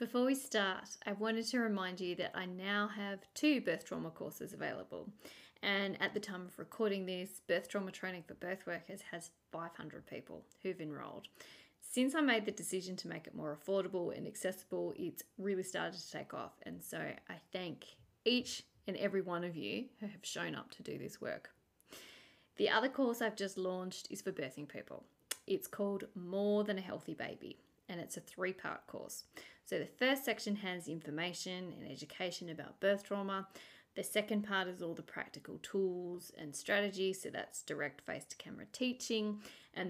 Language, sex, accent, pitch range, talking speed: English, female, Australian, 170-210 Hz, 180 wpm